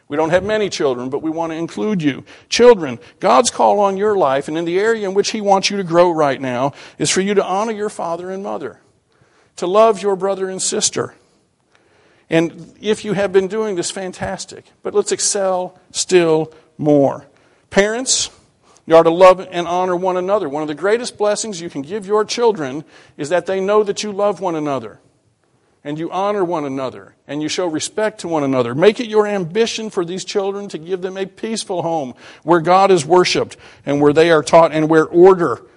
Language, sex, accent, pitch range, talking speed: English, male, American, 155-195 Hz, 205 wpm